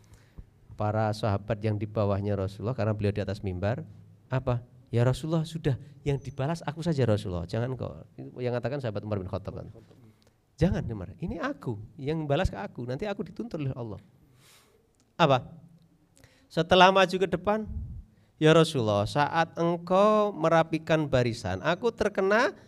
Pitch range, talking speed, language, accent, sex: 110-165 Hz, 140 wpm, Indonesian, native, male